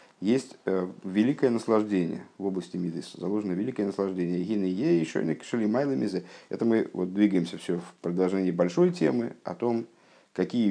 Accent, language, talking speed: native, Russian, 155 wpm